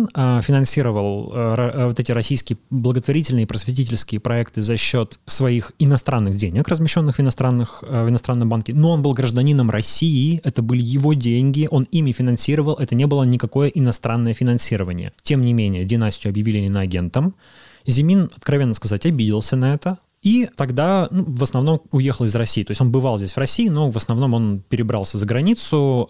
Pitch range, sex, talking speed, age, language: 110-140 Hz, male, 165 wpm, 20-39, Russian